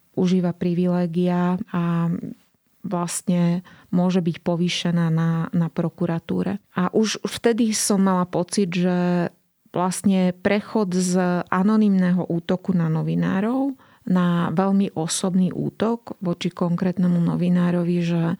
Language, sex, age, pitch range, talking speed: Slovak, female, 30-49, 170-190 Hz, 105 wpm